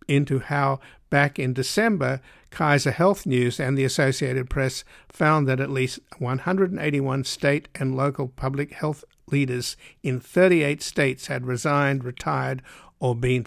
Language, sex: English, male